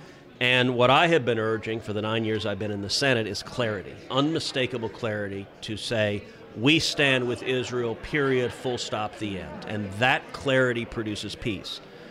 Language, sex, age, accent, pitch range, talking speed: English, male, 50-69, American, 110-135 Hz, 175 wpm